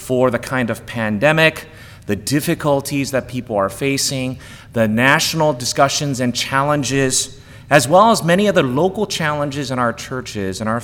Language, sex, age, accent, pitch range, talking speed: English, male, 30-49, American, 115-150 Hz, 150 wpm